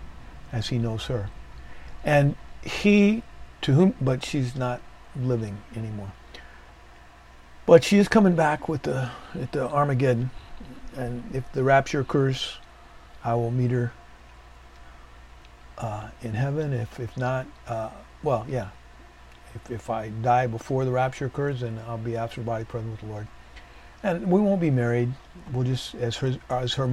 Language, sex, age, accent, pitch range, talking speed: English, male, 50-69, American, 95-150 Hz, 155 wpm